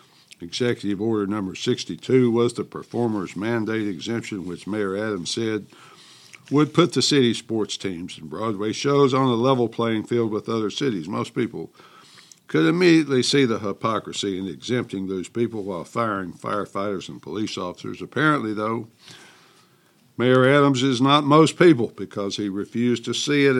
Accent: American